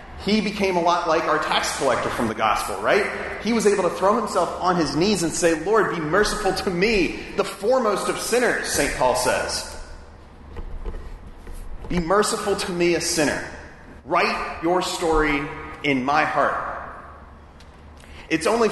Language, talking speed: English, 155 wpm